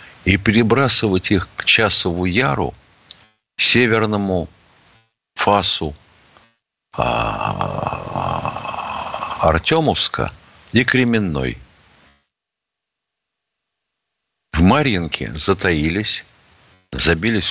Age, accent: 60-79, native